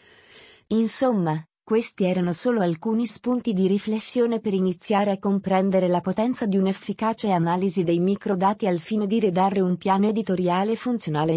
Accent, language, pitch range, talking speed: native, Italian, 180-225 Hz, 145 wpm